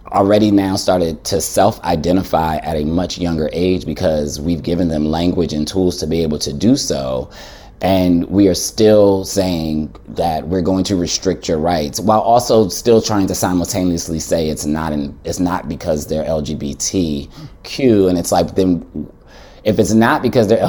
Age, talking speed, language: 30-49, 175 wpm, English